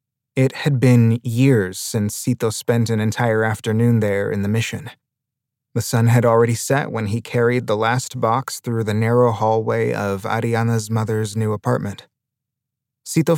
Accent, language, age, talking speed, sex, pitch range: American, English, 30-49, 155 wpm, male, 110-130 Hz